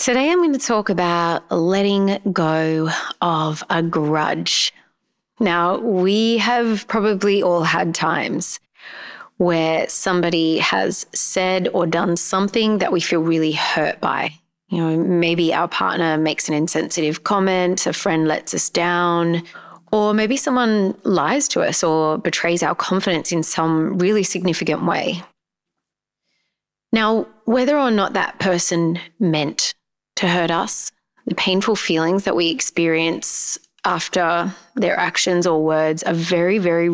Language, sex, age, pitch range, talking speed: English, female, 30-49, 165-195 Hz, 135 wpm